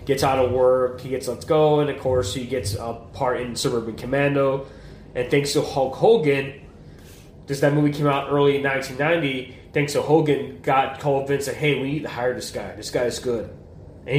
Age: 20-39